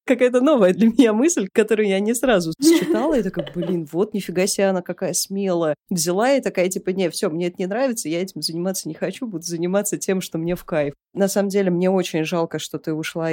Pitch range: 170-205 Hz